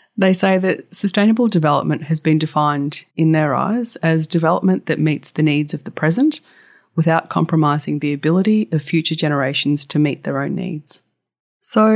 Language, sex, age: English, female, 30-49